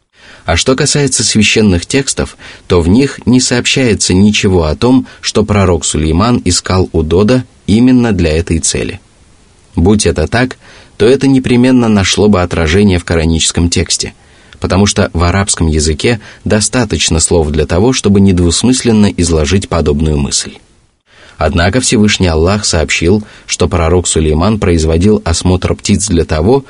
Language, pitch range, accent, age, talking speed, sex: Russian, 85-105 Hz, native, 20-39, 135 wpm, male